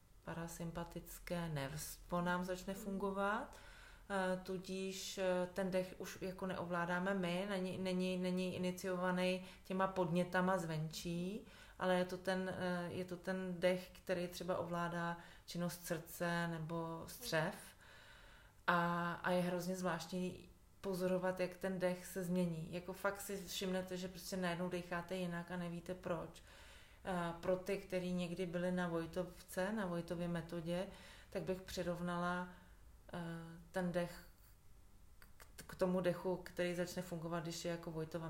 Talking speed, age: 130 wpm, 30-49